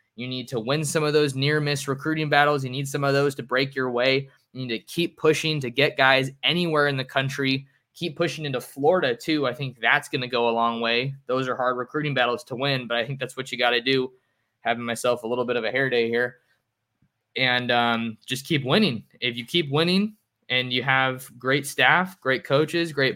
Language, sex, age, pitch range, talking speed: English, male, 20-39, 125-145 Hz, 230 wpm